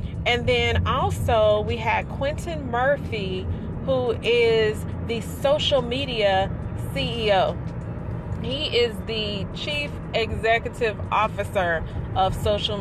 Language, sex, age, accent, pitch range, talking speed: English, female, 30-49, American, 185-230 Hz, 100 wpm